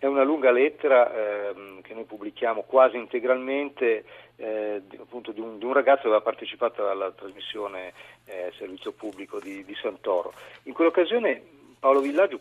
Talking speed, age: 155 wpm, 40-59